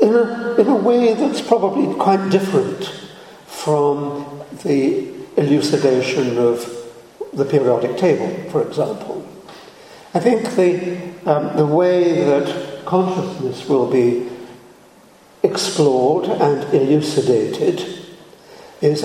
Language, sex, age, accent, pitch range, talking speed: English, male, 60-79, British, 135-190 Hz, 100 wpm